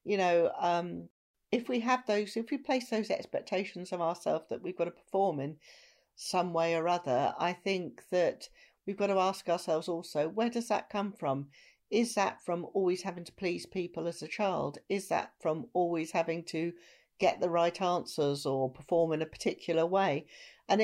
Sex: female